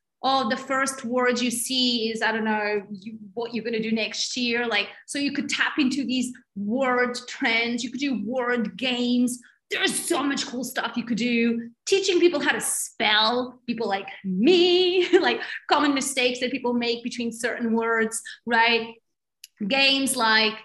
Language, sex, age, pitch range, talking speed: English, female, 30-49, 225-290 Hz, 175 wpm